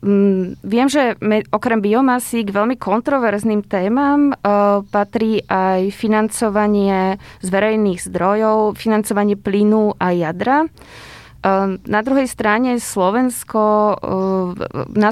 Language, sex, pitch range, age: Slovak, female, 195-230 Hz, 20-39